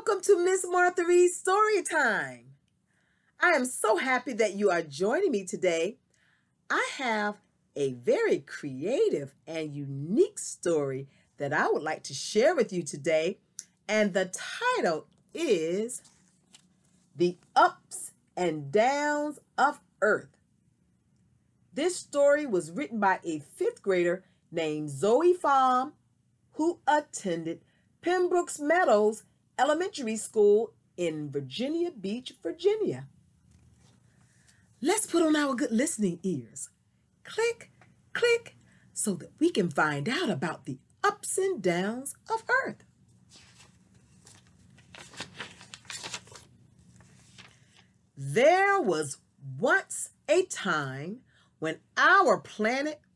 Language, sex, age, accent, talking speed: English, female, 40-59, American, 105 wpm